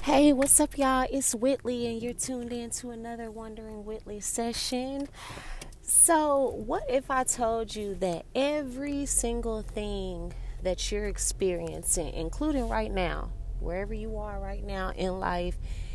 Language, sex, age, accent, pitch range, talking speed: English, female, 30-49, American, 175-235 Hz, 145 wpm